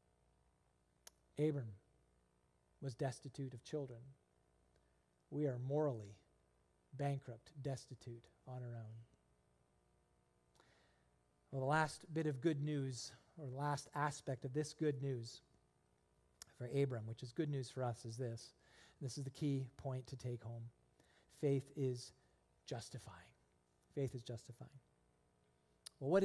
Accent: American